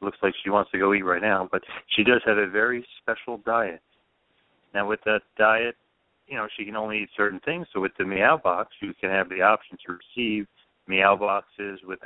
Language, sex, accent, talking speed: English, male, American, 220 wpm